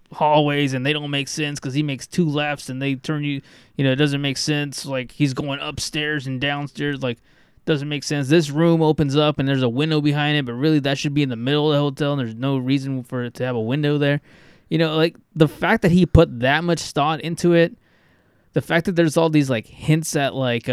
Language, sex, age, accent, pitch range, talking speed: English, male, 20-39, American, 120-150 Hz, 250 wpm